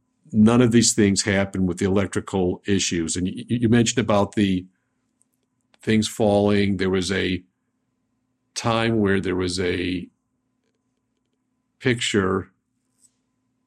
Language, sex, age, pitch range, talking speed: English, male, 50-69, 95-115 Hz, 115 wpm